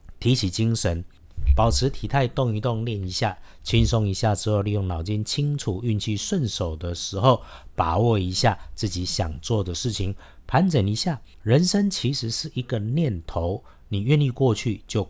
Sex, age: male, 50-69